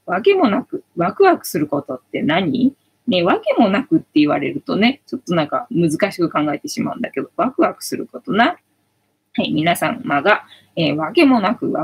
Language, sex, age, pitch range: Japanese, female, 20-39, 160-260 Hz